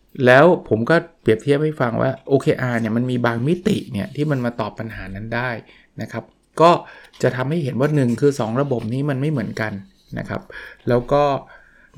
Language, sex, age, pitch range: Thai, male, 20-39, 115-140 Hz